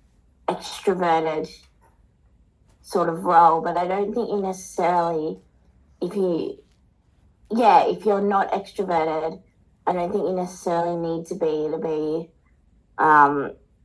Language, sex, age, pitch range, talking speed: English, female, 30-49, 155-175 Hz, 120 wpm